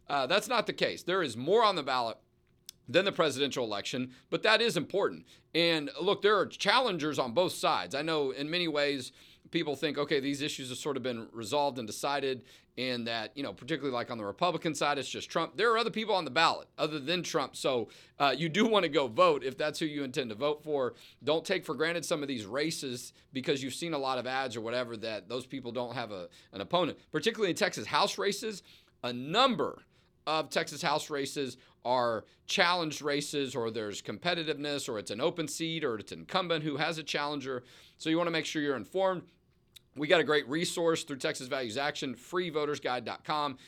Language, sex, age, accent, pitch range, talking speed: English, male, 40-59, American, 130-165 Hz, 215 wpm